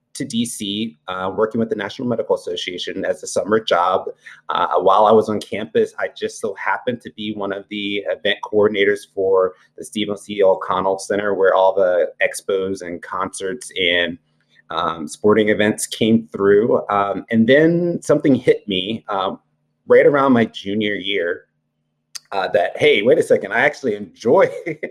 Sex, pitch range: male, 95-145 Hz